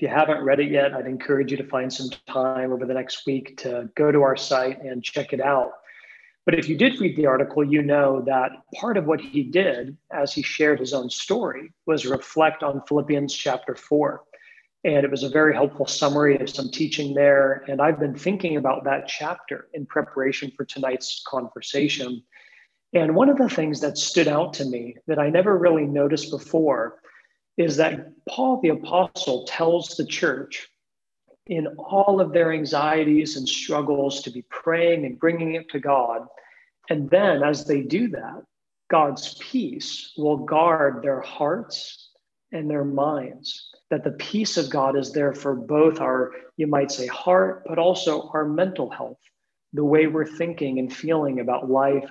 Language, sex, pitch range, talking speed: English, male, 135-165 Hz, 180 wpm